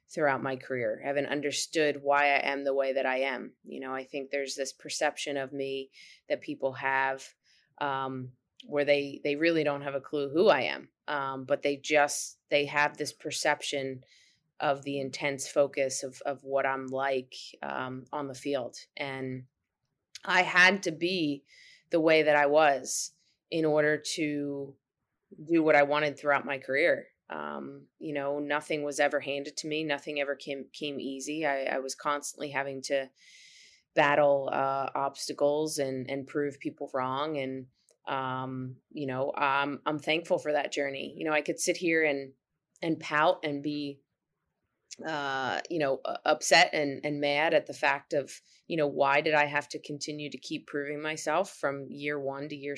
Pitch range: 135-150 Hz